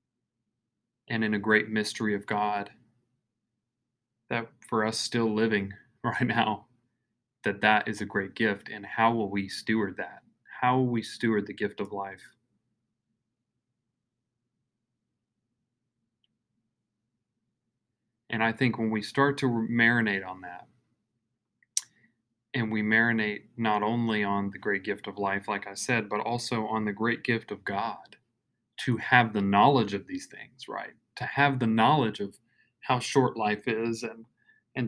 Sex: male